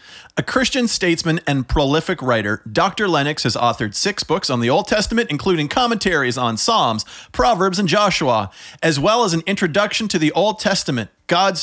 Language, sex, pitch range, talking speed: English, male, 135-190 Hz, 170 wpm